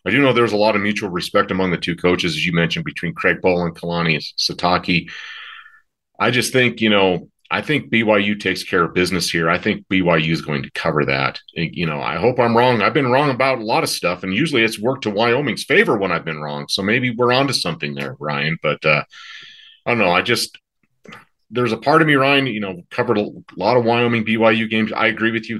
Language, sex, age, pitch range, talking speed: English, male, 40-59, 90-120 Hz, 240 wpm